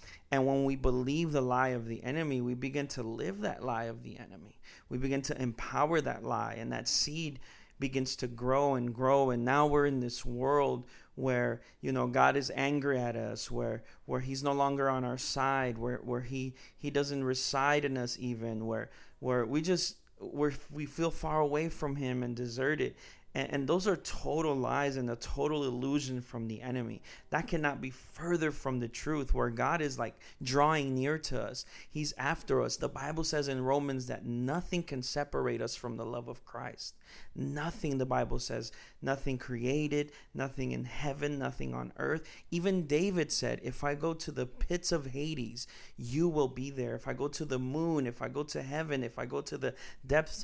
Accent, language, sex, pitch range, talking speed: American, English, male, 125-145 Hz, 195 wpm